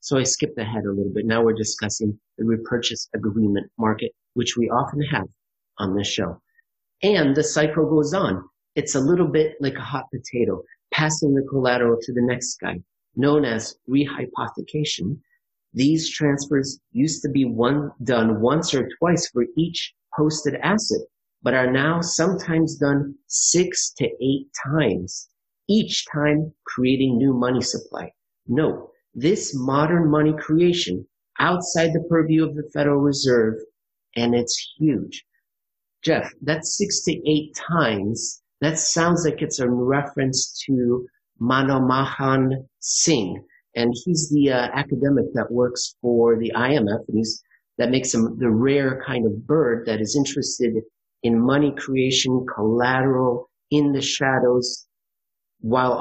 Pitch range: 120-150 Hz